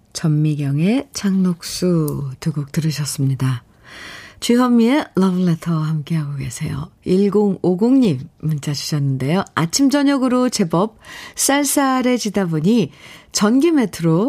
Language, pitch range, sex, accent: Korean, 160-235 Hz, female, native